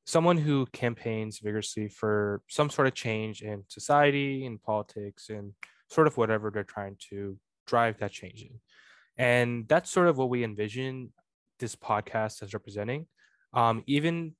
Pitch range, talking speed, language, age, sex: 105-120 Hz, 155 wpm, English, 10-29, male